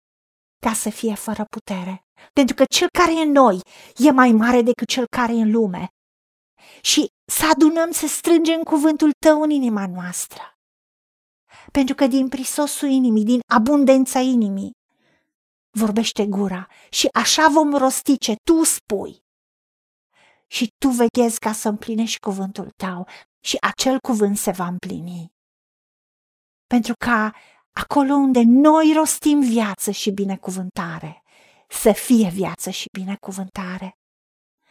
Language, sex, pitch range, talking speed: Romanian, female, 205-275 Hz, 130 wpm